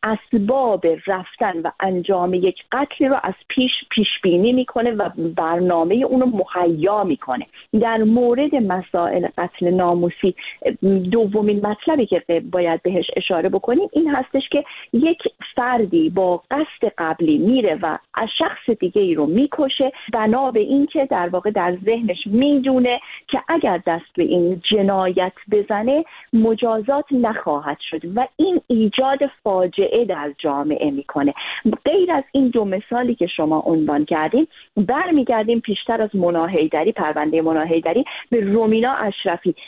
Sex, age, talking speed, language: female, 40-59, 130 wpm, Persian